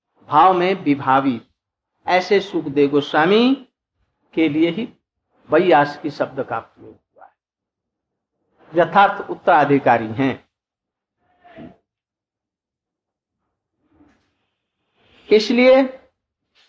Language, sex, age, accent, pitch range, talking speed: Hindi, male, 60-79, native, 150-225 Hz, 70 wpm